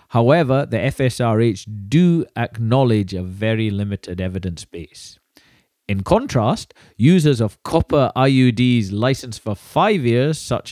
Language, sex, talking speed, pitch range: English, male, 120 wpm, 100-130 Hz